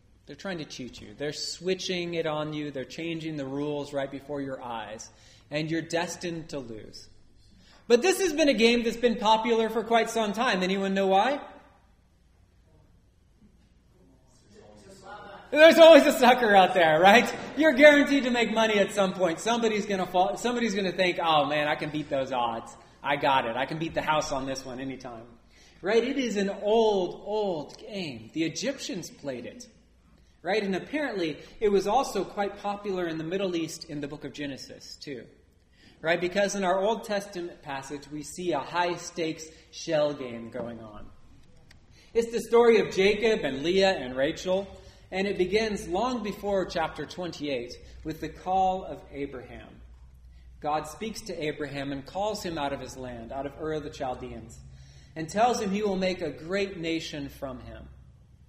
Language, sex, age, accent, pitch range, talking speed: English, male, 30-49, American, 135-200 Hz, 175 wpm